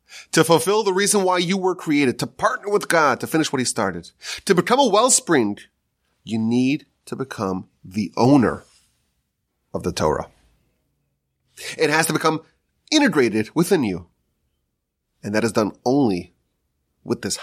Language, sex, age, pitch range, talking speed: English, male, 30-49, 95-135 Hz, 150 wpm